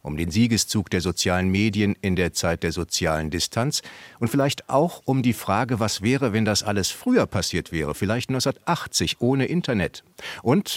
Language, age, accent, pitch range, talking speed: German, 50-69, German, 90-125 Hz, 175 wpm